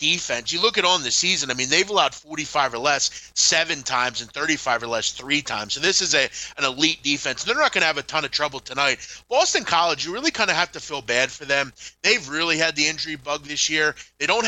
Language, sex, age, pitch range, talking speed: English, male, 30-49, 140-175 Hz, 255 wpm